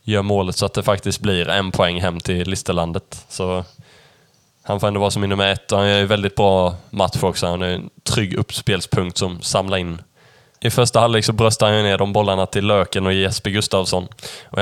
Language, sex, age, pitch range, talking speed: Swedish, male, 10-29, 95-115 Hz, 205 wpm